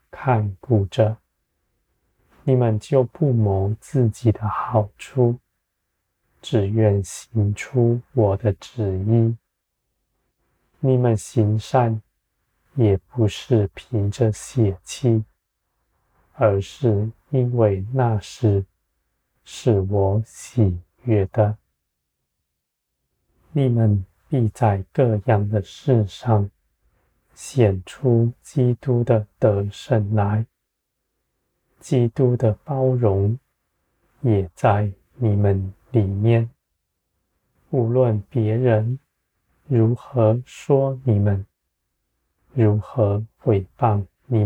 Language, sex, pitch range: Chinese, male, 100-125 Hz